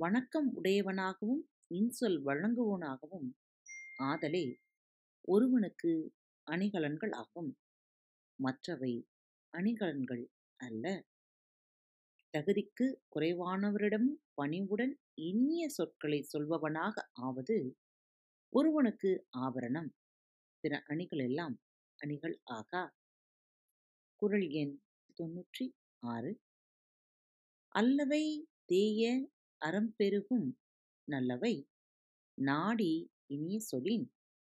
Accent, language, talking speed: native, Tamil, 60 wpm